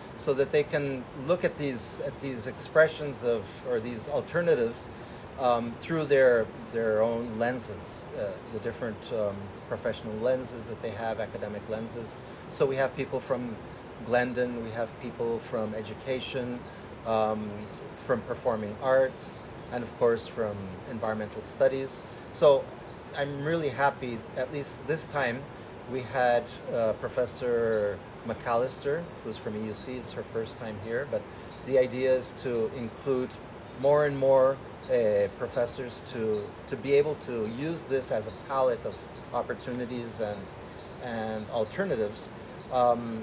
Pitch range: 110-140 Hz